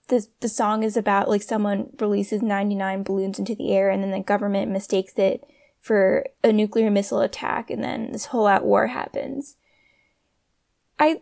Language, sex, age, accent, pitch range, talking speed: English, female, 10-29, American, 210-280 Hz, 170 wpm